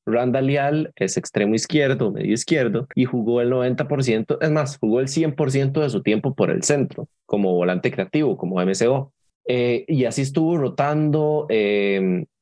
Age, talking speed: 20-39, 155 wpm